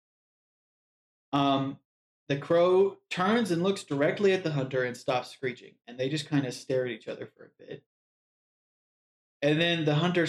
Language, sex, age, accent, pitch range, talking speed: English, male, 30-49, American, 130-160 Hz, 170 wpm